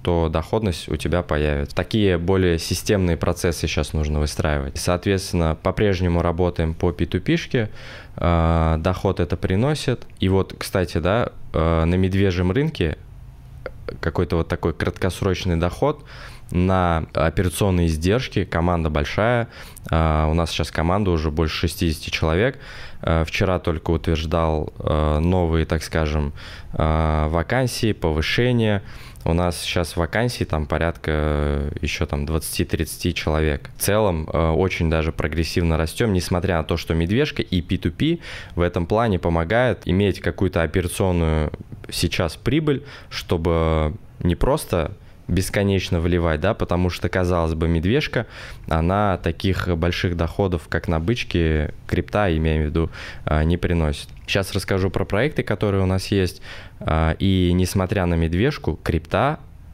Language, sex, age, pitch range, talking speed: Russian, male, 20-39, 80-100 Hz, 125 wpm